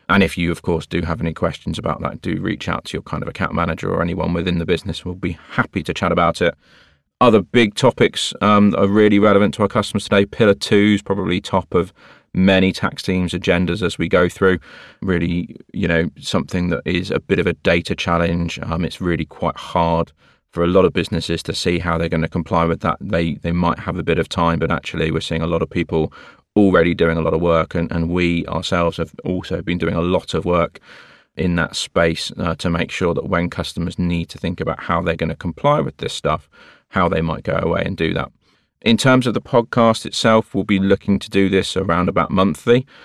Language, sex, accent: English, male, British